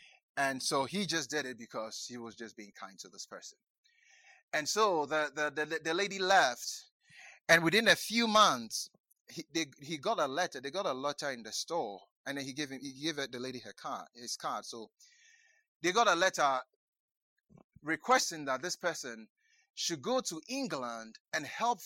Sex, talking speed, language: male, 190 wpm, English